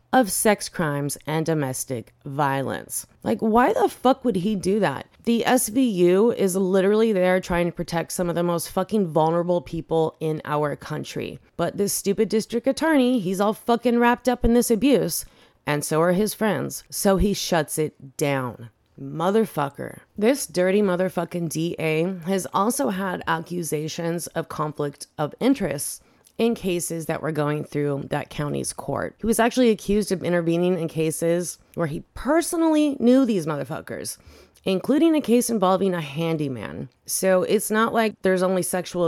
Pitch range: 160-210 Hz